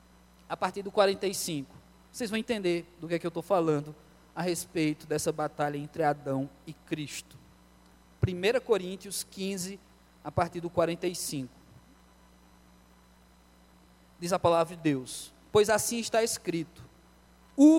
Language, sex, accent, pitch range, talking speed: Portuguese, male, Brazilian, 160-245 Hz, 130 wpm